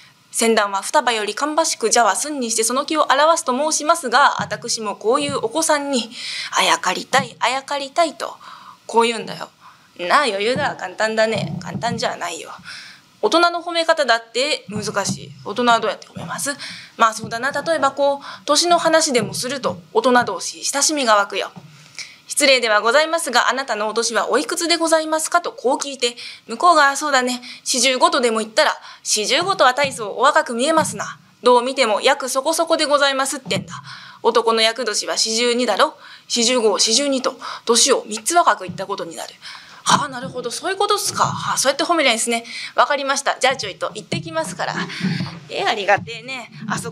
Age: 20-39